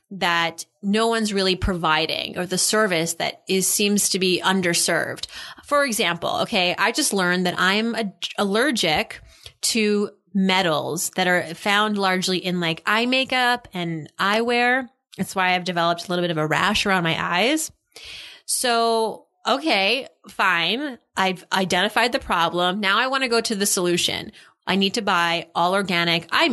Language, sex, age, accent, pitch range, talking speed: English, female, 30-49, American, 175-225 Hz, 160 wpm